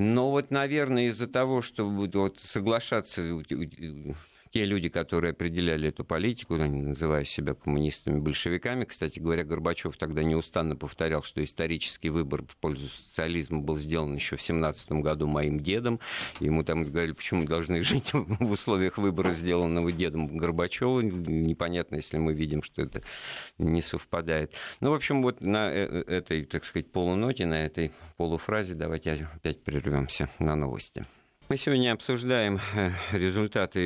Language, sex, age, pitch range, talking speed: Russian, male, 50-69, 80-105 Hz, 140 wpm